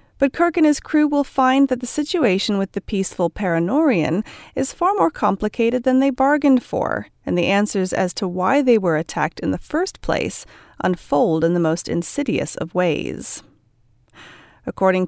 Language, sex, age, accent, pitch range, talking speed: English, female, 30-49, American, 185-285 Hz, 170 wpm